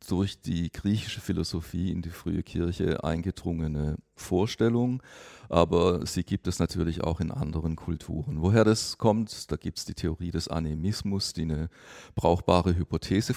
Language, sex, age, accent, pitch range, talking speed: German, male, 40-59, German, 80-100 Hz, 150 wpm